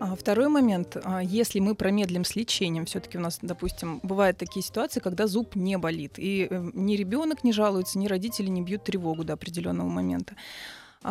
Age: 20-39